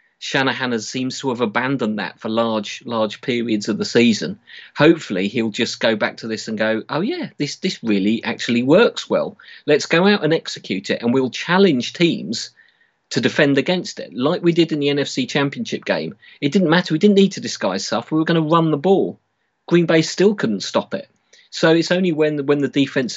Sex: male